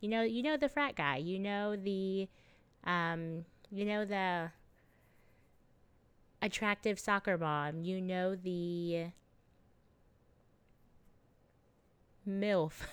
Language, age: English, 20-39